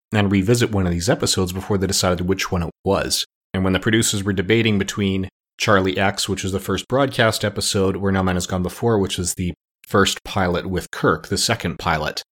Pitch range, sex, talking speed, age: 90-105 Hz, male, 215 wpm, 30-49